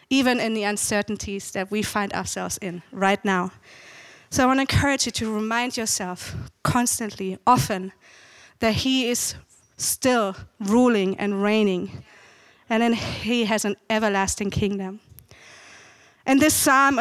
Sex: female